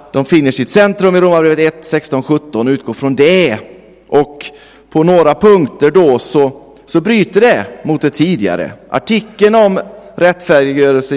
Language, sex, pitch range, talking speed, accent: Swedish, male, 120-175 Hz, 140 wpm, native